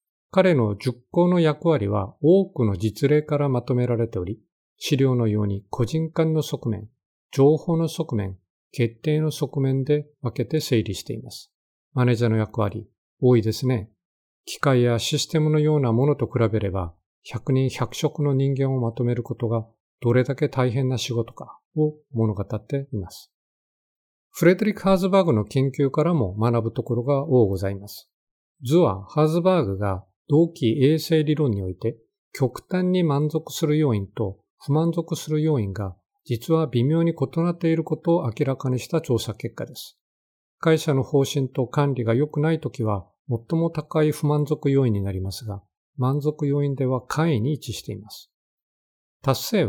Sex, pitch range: male, 110-155 Hz